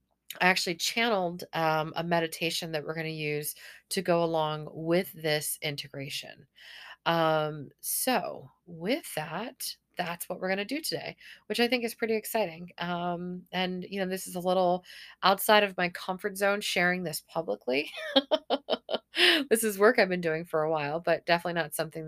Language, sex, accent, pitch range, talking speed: English, female, American, 160-200 Hz, 170 wpm